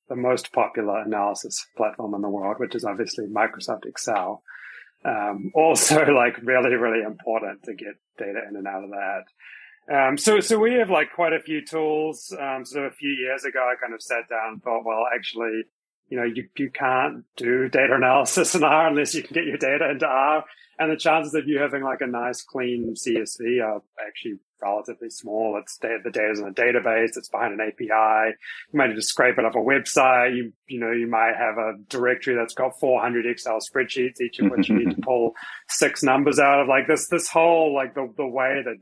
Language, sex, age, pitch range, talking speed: English, male, 30-49, 115-150 Hz, 210 wpm